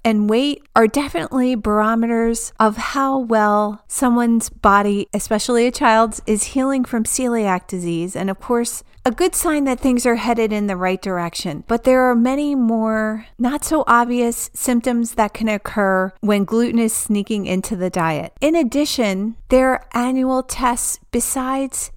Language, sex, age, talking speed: English, female, 40-59, 160 wpm